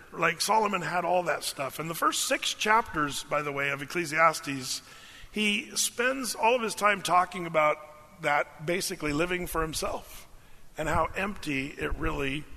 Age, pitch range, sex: 40-59, 145-185 Hz, male